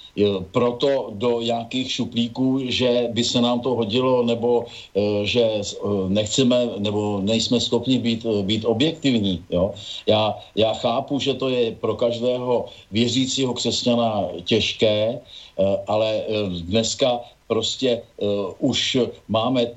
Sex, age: male, 50-69